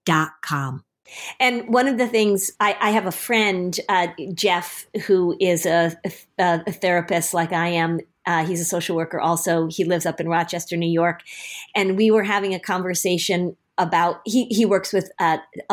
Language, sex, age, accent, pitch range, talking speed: English, female, 40-59, American, 180-225 Hz, 175 wpm